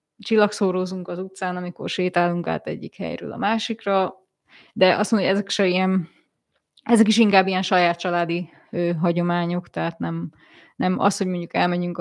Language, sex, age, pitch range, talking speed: Hungarian, female, 20-39, 175-205 Hz, 160 wpm